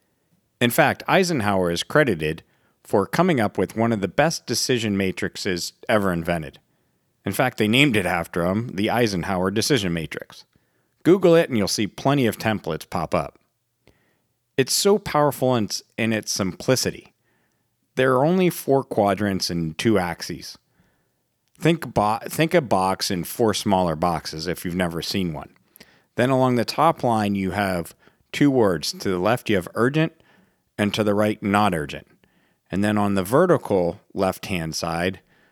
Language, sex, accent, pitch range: English, male, American, 90-120 Hz